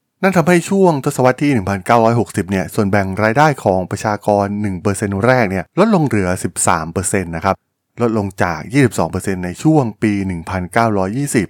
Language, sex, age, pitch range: Thai, male, 20-39, 100-130 Hz